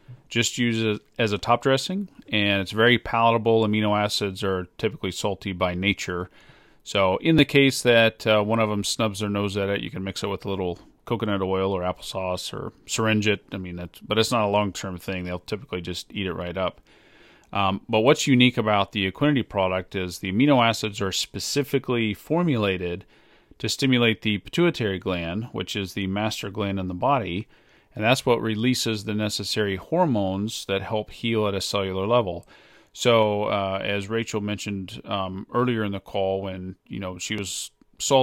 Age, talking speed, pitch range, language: 40-59, 185 wpm, 95-115 Hz, English